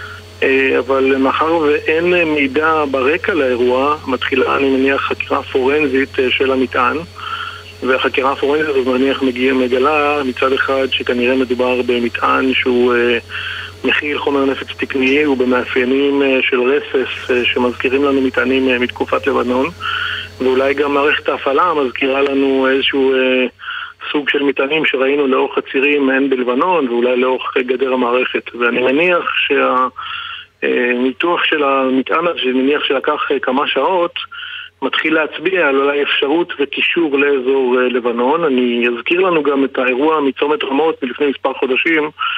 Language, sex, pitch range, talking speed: Hebrew, male, 130-160 Hz, 120 wpm